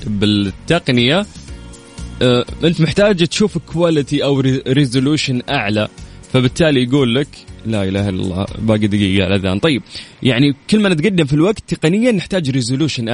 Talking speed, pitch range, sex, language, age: 130 wpm, 110-145 Hz, male, Arabic, 20-39